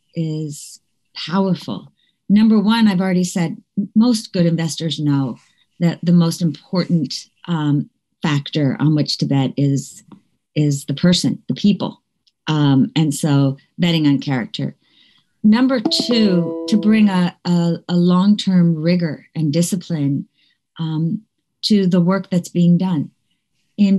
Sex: female